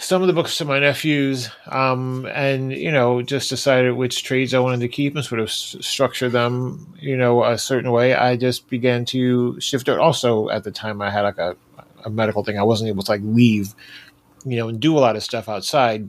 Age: 30-49